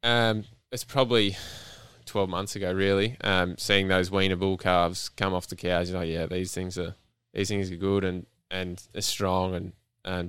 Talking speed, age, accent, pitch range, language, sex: 200 wpm, 10-29, Australian, 95-105 Hz, English, male